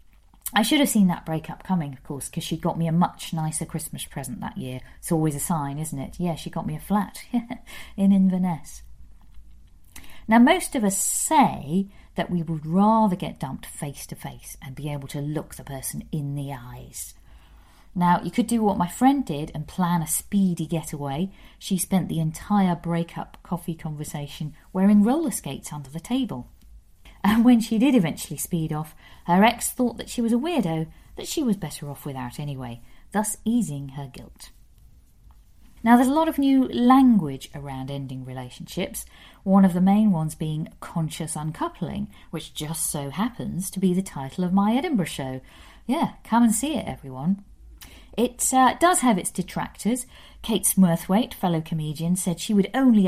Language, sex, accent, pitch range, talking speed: English, female, British, 150-210 Hz, 180 wpm